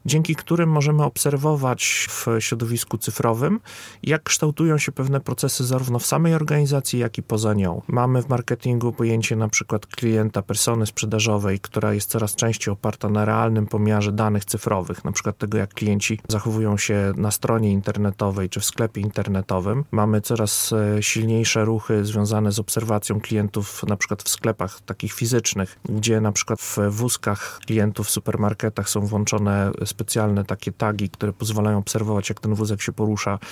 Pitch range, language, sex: 105-135 Hz, Polish, male